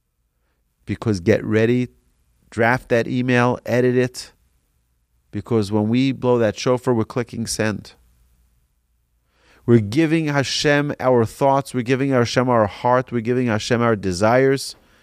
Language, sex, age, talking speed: English, male, 40-59, 130 wpm